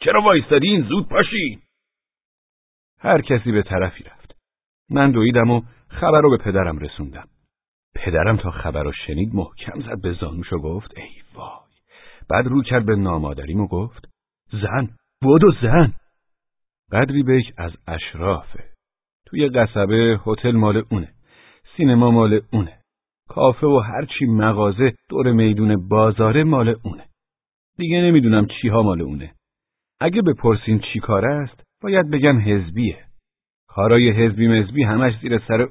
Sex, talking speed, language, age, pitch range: male, 135 wpm, Persian, 50-69, 100-135 Hz